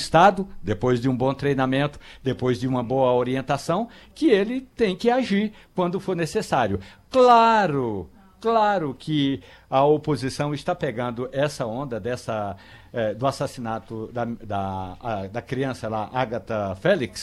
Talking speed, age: 140 wpm, 60-79